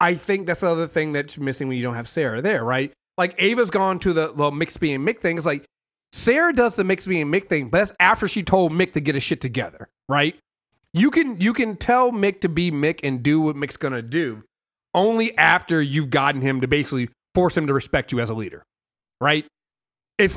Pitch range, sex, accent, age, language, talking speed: 135-190 Hz, male, American, 30-49, English, 230 wpm